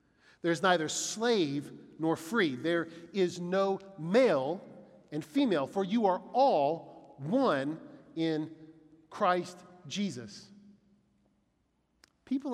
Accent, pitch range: American, 180-255 Hz